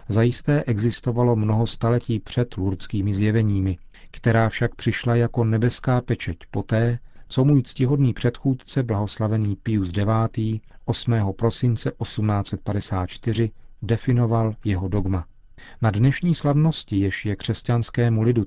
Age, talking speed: 40-59, 110 wpm